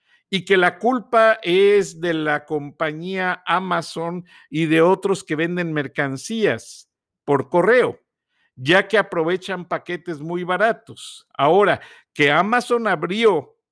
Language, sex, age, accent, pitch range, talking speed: Spanish, male, 50-69, Mexican, 160-215 Hz, 120 wpm